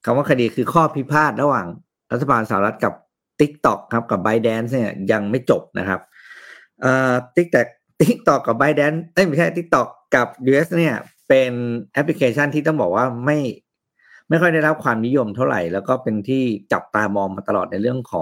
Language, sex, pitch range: Thai, male, 105-140 Hz